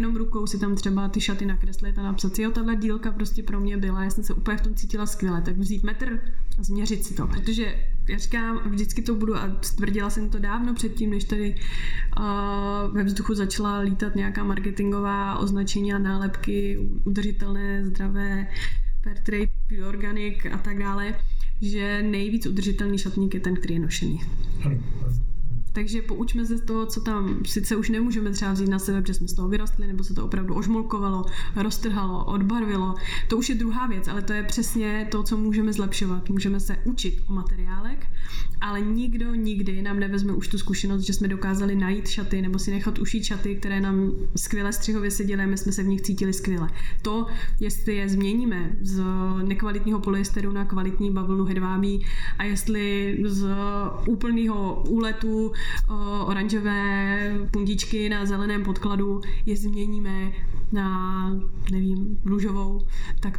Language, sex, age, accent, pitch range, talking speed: Czech, female, 20-39, native, 195-210 Hz, 170 wpm